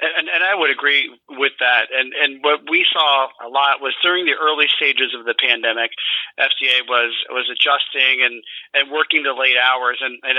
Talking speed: 195 wpm